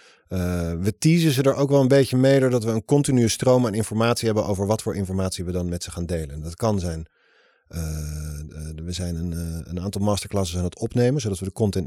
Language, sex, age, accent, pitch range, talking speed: Dutch, male, 40-59, Dutch, 95-115 Hz, 240 wpm